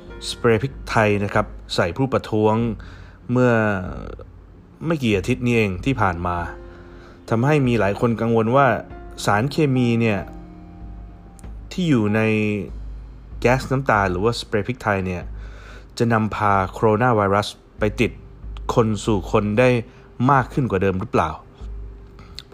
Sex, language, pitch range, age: male, Thai, 100-125 Hz, 20-39